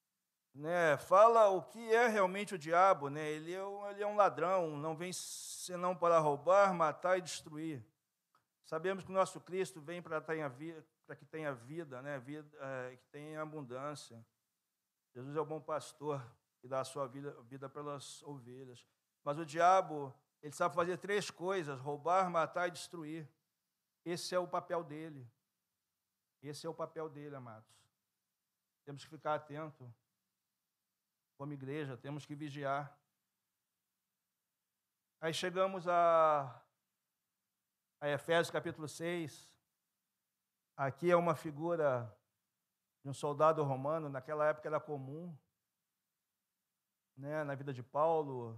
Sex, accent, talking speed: male, Brazilian, 135 wpm